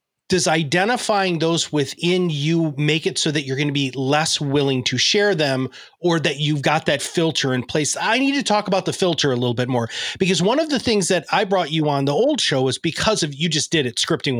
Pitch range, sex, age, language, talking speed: 135-175 Hz, male, 30-49, English, 240 wpm